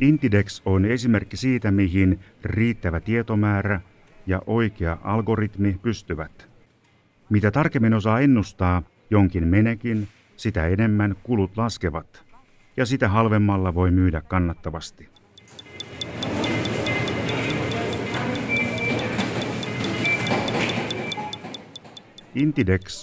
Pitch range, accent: 80-110 Hz, native